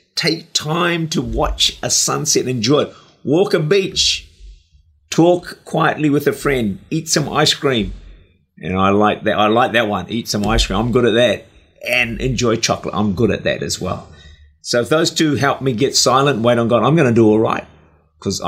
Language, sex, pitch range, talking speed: English, male, 90-140 Hz, 210 wpm